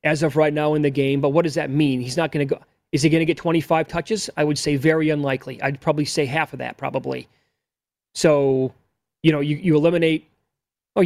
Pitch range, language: 140-165 Hz, English